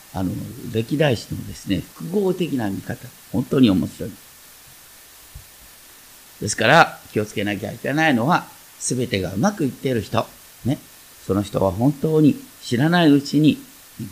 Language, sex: Japanese, male